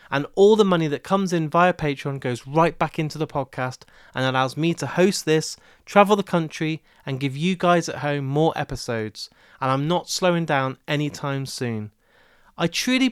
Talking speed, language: 190 wpm, English